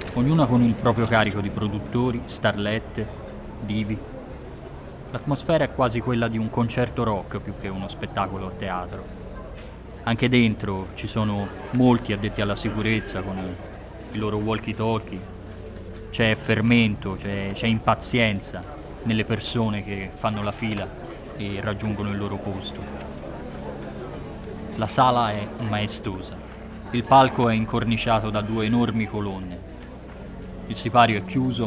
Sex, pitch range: male, 95-115 Hz